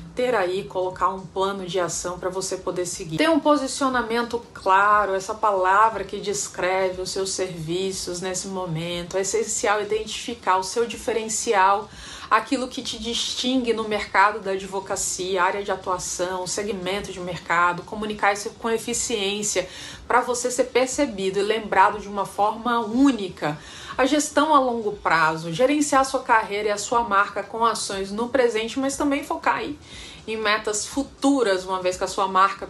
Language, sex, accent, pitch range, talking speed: Portuguese, female, Brazilian, 190-250 Hz, 160 wpm